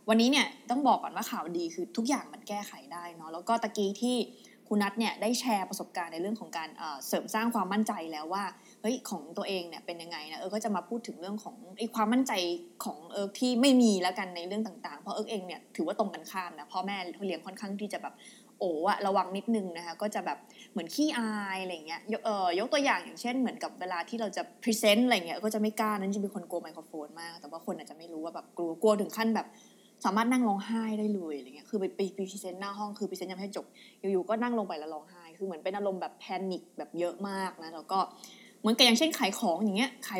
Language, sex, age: Thai, female, 20-39